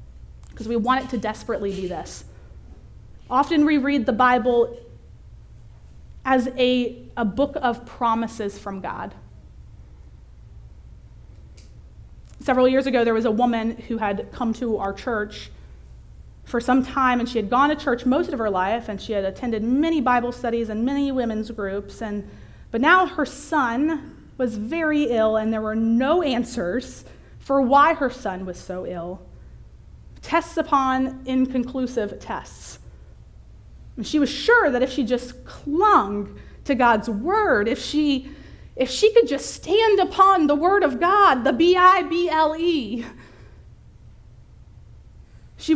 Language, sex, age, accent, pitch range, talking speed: English, female, 30-49, American, 235-315 Hz, 140 wpm